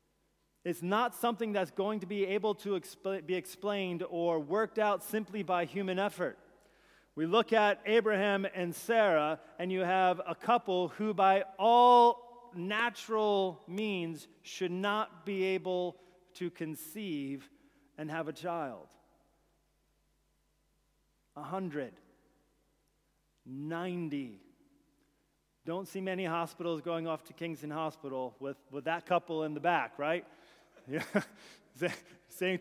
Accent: American